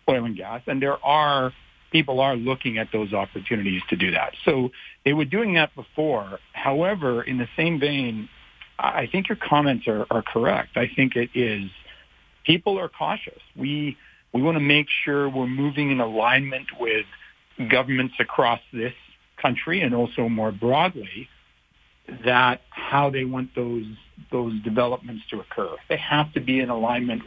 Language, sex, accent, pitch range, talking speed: English, male, American, 115-140 Hz, 165 wpm